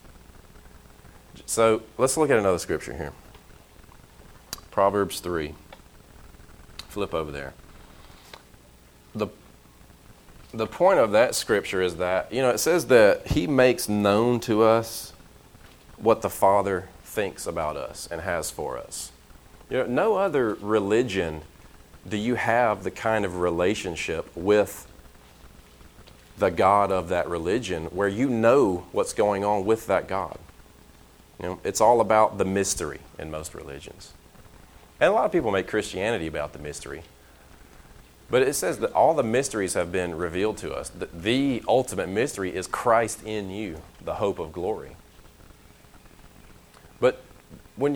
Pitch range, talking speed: 80-110 Hz, 140 wpm